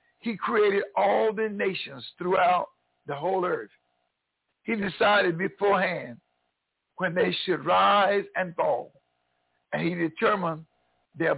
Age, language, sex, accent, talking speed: 60-79, English, male, American, 115 wpm